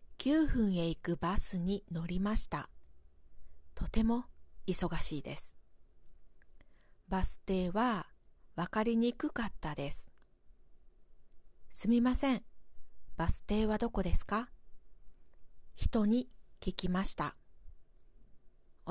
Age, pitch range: 40-59, 155-225 Hz